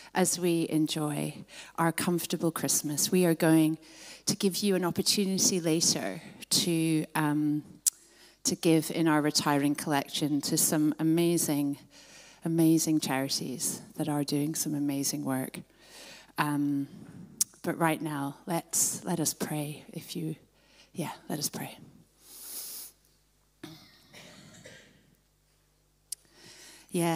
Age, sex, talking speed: 30-49, female, 110 wpm